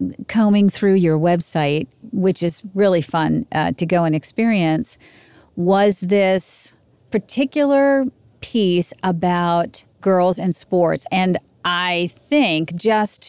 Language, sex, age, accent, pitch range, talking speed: English, female, 50-69, American, 165-200 Hz, 115 wpm